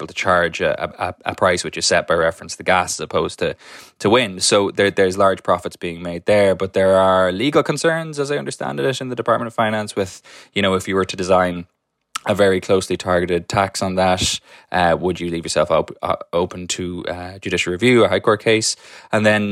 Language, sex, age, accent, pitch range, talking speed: English, male, 20-39, Irish, 85-100 Hz, 225 wpm